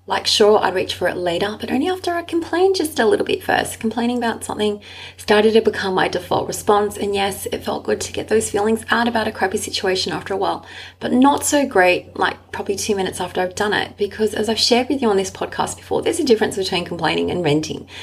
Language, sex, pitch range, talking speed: English, female, 190-240 Hz, 240 wpm